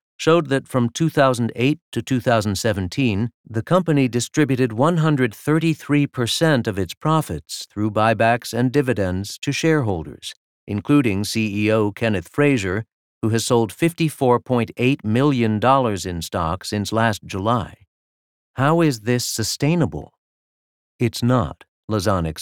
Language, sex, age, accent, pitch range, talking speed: English, male, 50-69, American, 100-130 Hz, 105 wpm